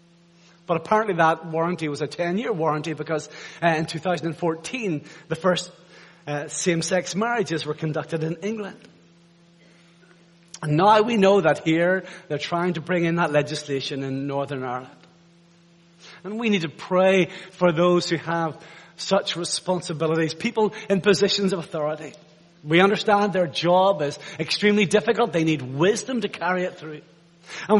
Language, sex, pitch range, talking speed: English, male, 160-195 Hz, 145 wpm